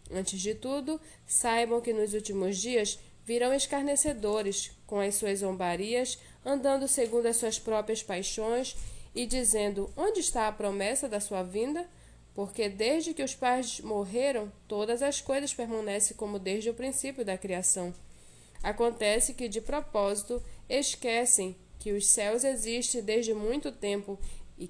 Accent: Brazilian